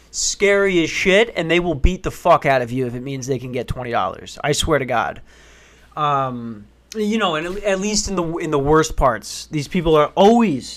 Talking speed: 215 wpm